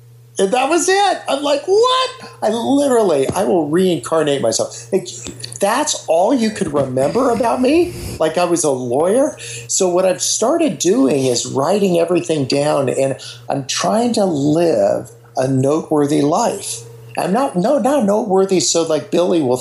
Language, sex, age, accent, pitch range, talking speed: English, male, 50-69, American, 120-185 Hz, 160 wpm